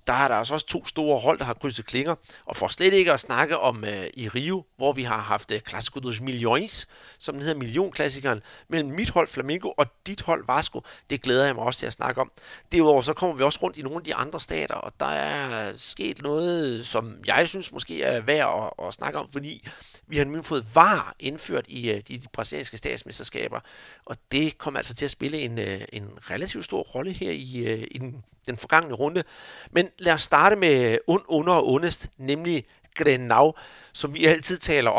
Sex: male